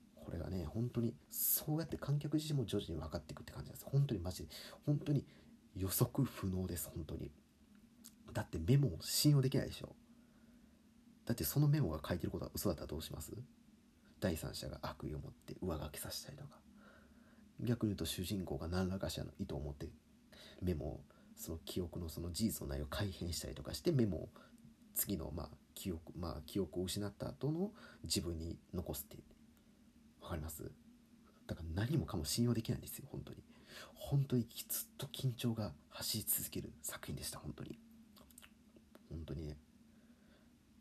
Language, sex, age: Japanese, male, 40-59